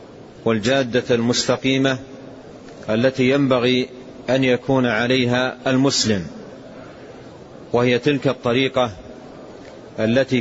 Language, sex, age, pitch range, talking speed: Arabic, male, 40-59, 120-140 Hz, 70 wpm